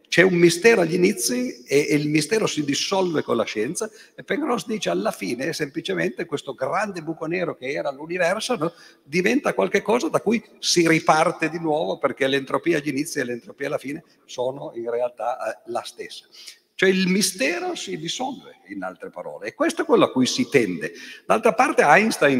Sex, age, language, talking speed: male, 50-69, Italian, 180 wpm